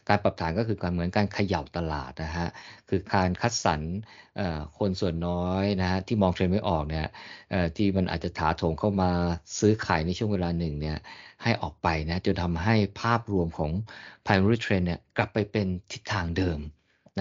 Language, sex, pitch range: Thai, male, 85-100 Hz